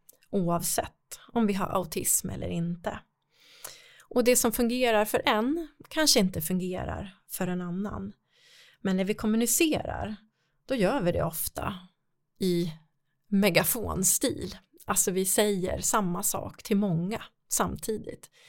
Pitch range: 185-245 Hz